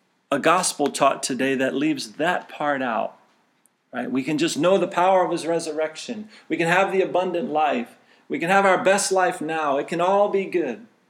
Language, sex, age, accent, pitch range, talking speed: English, male, 40-59, American, 145-195 Hz, 200 wpm